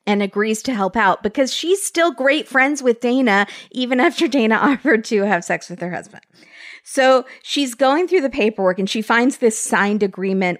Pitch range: 190-240 Hz